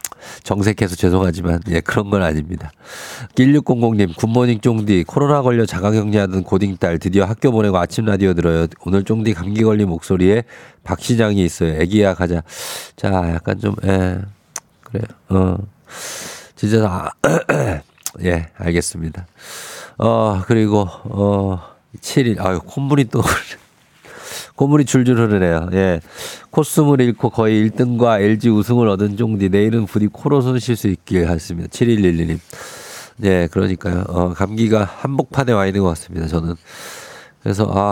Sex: male